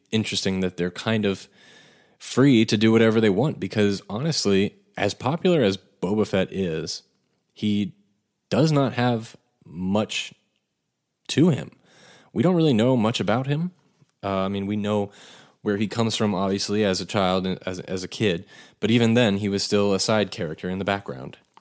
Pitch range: 95-110 Hz